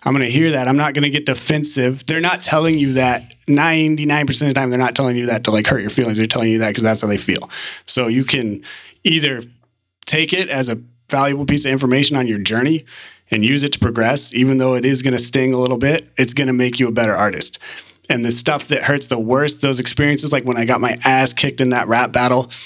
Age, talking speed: 30-49, 255 wpm